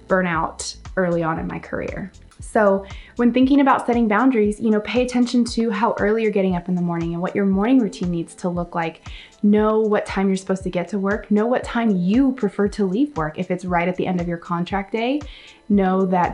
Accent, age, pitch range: American, 20-39, 180-225 Hz